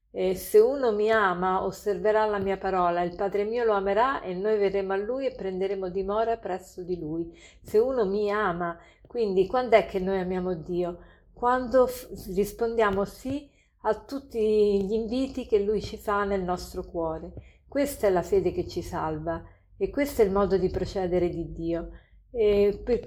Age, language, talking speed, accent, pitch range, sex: 50-69, Italian, 180 wpm, native, 185-225 Hz, female